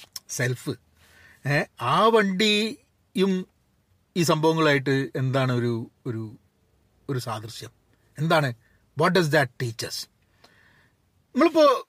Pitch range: 125-185 Hz